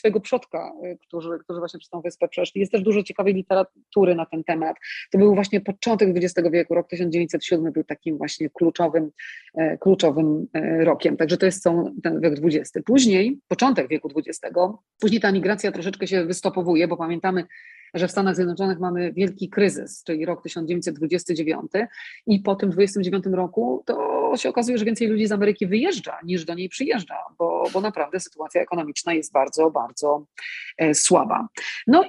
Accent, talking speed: native, 165 wpm